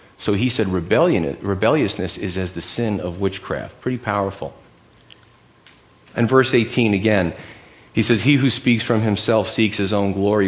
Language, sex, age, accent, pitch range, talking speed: English, male, 40-59, American, 105-125 Hz, 155 wpm